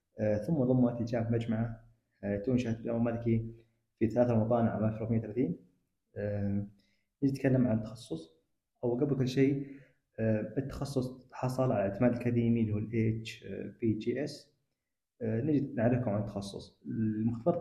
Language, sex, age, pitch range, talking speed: Arabic, male, 20-39, 110-130 Hz, 110 wpm